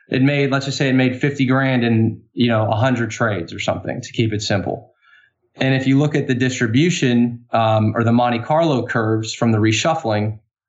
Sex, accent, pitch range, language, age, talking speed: male, American, 115-130 Hz, English, 20-39, 200 wpm